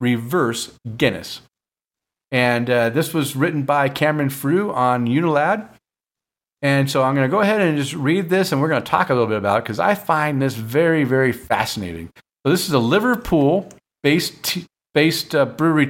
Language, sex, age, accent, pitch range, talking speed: English, male, 50-69, American, 120-160 Hz, 190 wpm